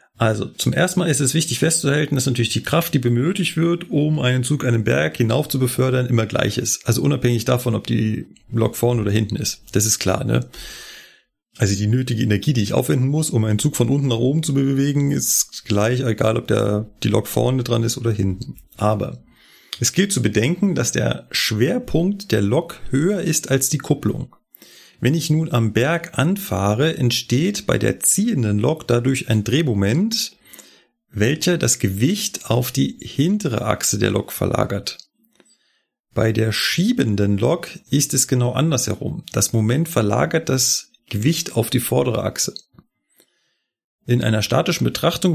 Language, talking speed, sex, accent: German, 170 wpm, male, German